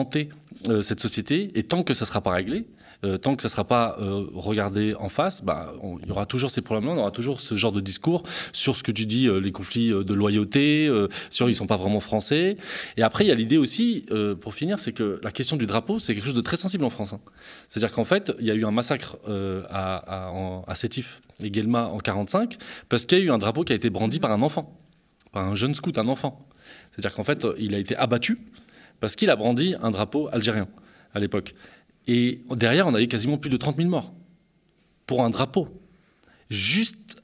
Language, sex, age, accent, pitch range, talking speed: French, male, 20-39, French, 105-160 Hz, 235 wpm